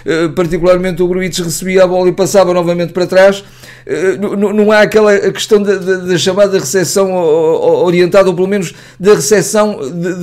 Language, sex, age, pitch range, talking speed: Portuguese, male, 50-69, 160-210 Hz, 155 wpm